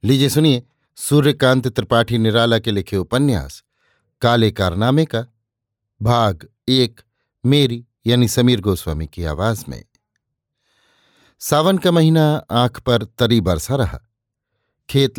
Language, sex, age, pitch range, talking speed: Hindi, male, 50-69, 110-130 Hz, 115 wpm